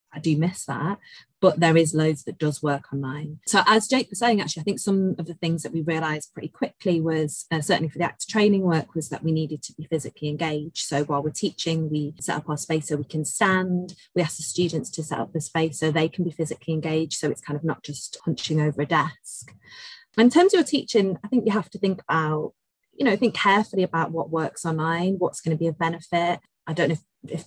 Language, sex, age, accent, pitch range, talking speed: English, female, 30-49, British, 155-180 Hz, 250 wpm